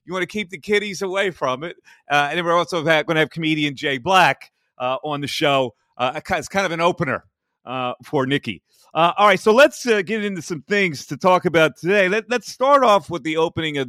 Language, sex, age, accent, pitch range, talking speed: English, male, 40-59, American, 130-185 Hz, 240 wpm